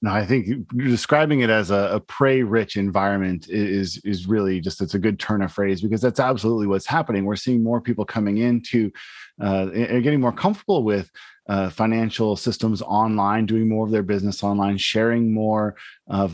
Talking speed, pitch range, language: 185 wpm, 100-125 Hz, English